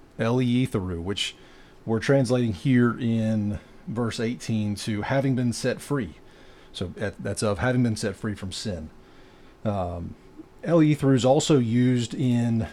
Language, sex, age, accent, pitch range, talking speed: English, male, 30-49, American, 110-135 Hz, 130 wpm